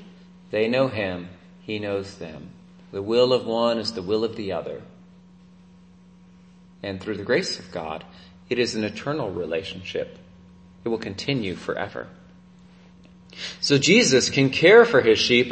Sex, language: male, English